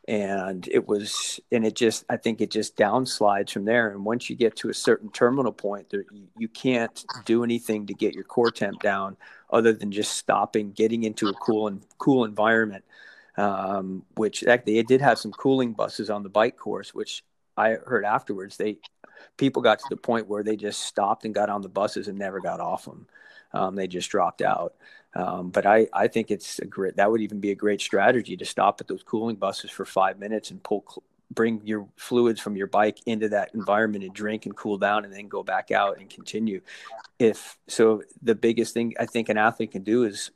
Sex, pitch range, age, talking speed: male, 100-115 Hz, 40-59, 215 wpm